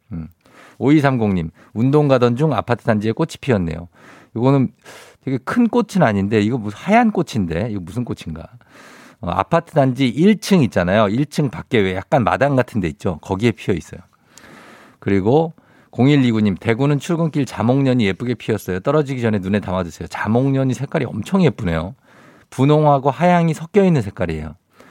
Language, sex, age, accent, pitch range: Korean, male, 50-69, native, 100-150 Hz